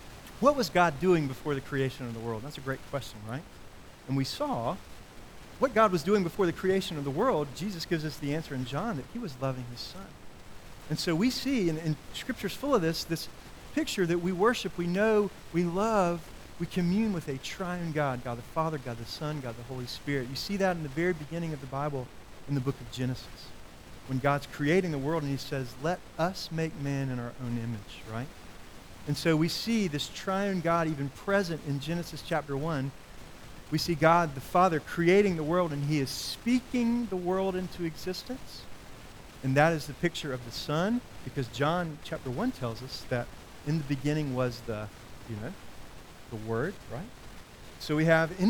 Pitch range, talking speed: 130-180 Hz, 205 wpm